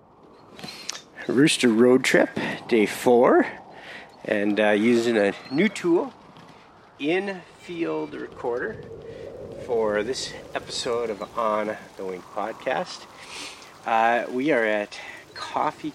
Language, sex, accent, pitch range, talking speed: English, male, American, 95-125 Hz, 100 wpm